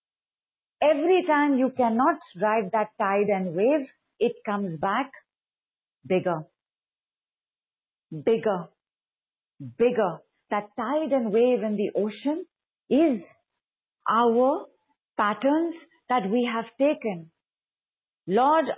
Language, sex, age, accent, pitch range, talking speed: English, female, 50-69, Indian, 200-255 Hz, 95 wpm